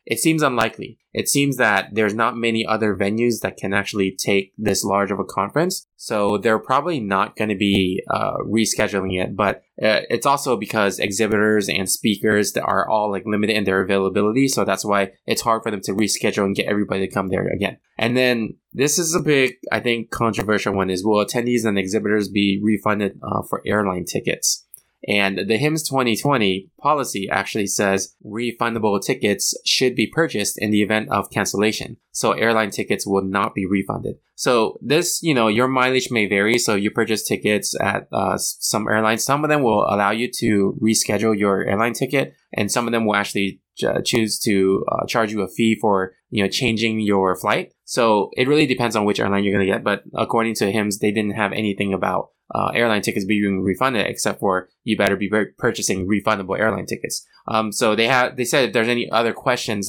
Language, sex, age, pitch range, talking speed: English, male, 20-39, 100-115 Hz, 195 wpm